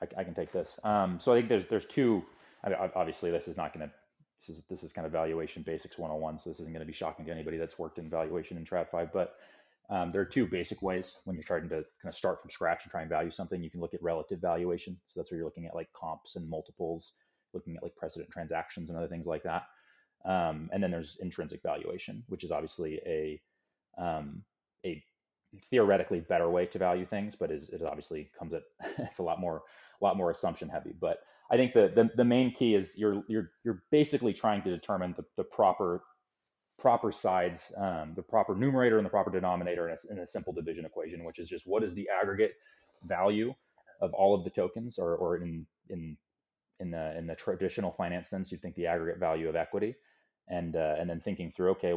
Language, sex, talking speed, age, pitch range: English, male, 225 wpm, 30-49, 85-100 Hz